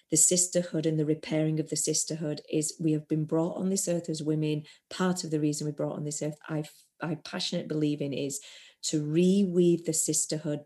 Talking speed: 210 wpm